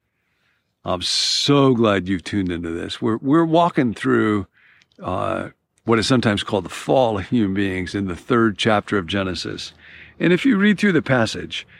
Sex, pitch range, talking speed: male, 105-145 Hz, 175 wpm